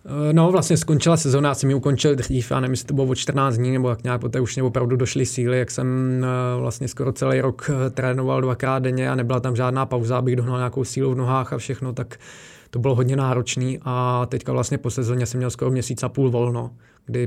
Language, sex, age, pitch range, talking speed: Czech, male, 20-39, 120-130 Hz, 235 wpm